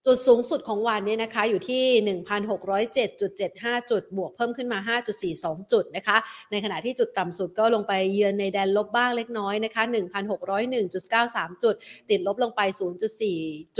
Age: 30-49